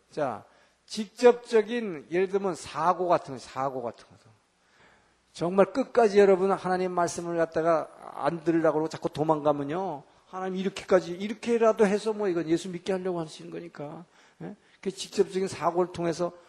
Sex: male